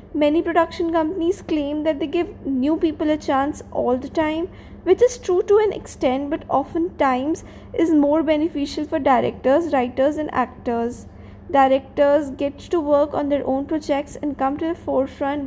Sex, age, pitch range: female, 20-39, 270-335 Hz